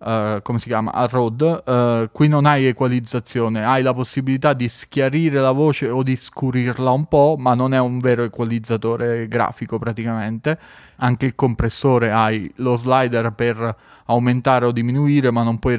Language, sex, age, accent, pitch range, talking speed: Italian, male, 20-39, native, 115-135 Hz, 165 wpm